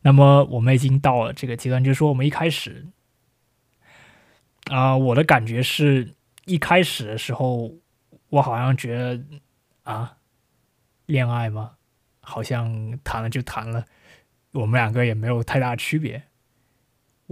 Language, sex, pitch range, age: Chinese, male, 120-140 Hz, 20-39